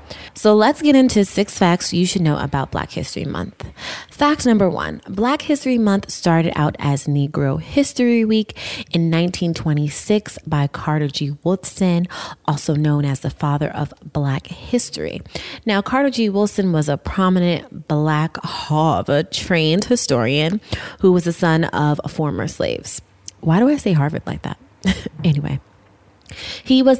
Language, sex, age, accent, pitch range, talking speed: English, female, 20-39, American, 150-210 Hz, 150 wpm